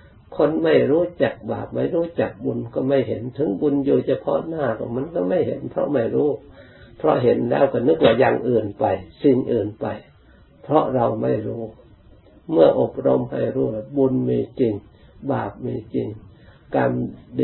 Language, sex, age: Thai, male, 60-79